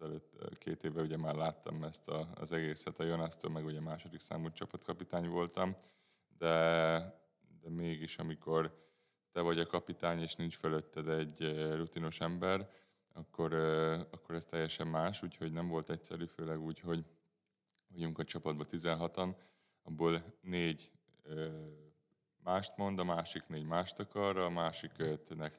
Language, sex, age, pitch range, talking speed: Hungarian, male, 20-39, 80-85 Hz, 140 wpm